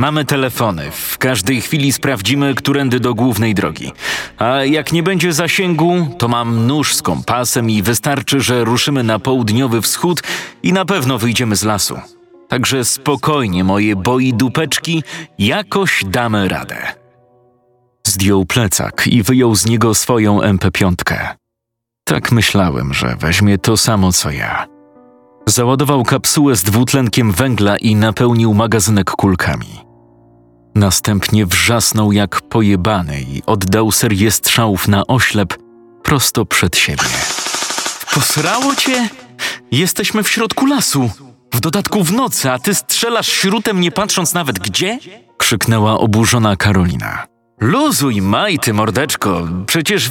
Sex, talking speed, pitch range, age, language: male, 125 wpm, 105-145 Hz, 30-49, Polish